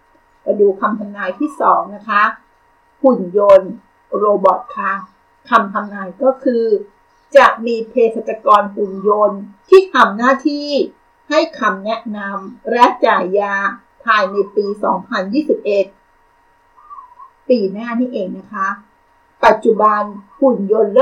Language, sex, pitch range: Thai, female, 205-270 Hz